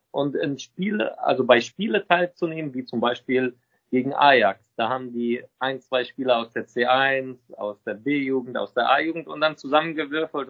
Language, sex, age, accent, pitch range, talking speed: German, male, 40-59, German, 120-160 Hz, 170 wpm